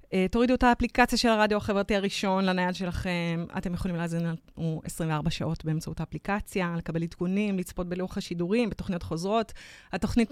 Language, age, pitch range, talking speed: Hebrew, 30-49, 180-230 Hz, 150 wpm